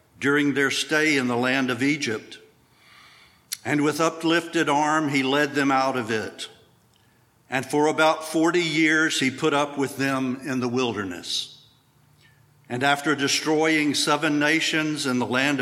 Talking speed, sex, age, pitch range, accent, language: 150 wpm, male, 60-79, 130-150 Hz, American, English